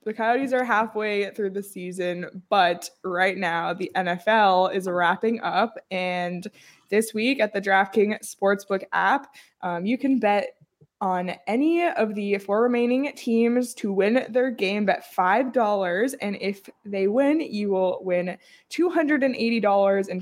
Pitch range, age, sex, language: 185-225 Hz, 20-39, female, English